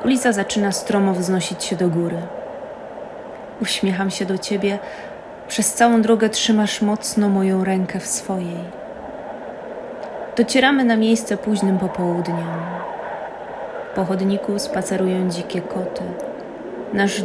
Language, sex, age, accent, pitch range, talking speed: Polish, female, 20-39, native, 185-230 Hz, 110 wpm